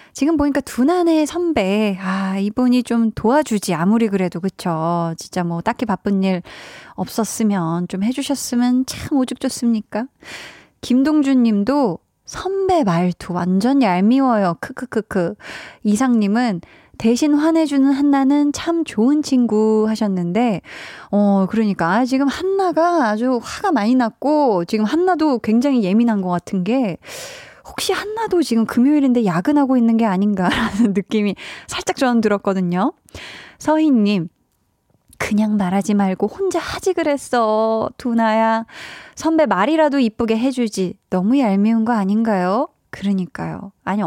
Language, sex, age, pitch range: Korean, female, 20-39, 200-275 Hz